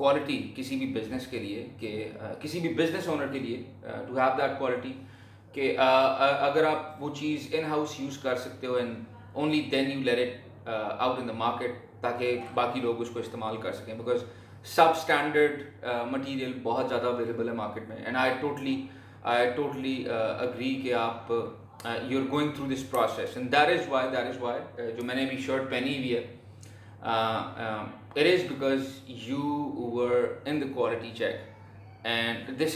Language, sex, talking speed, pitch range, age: Urdu, male, 125 wpm, 115-145 Hz, 30-49